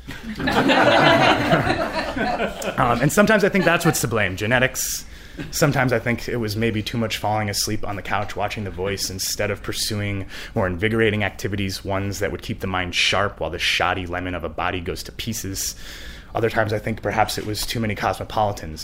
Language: English